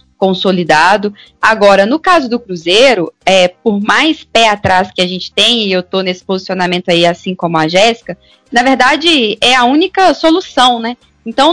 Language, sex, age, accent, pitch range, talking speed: Portuguese, female, 10-29, Brazilian, 195-265 Hz, 170 wpm